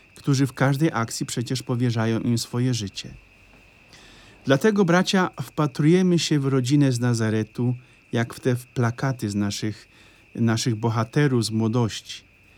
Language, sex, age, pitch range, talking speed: Polish, male, 50-69, 115-160 Hz, 130 wpm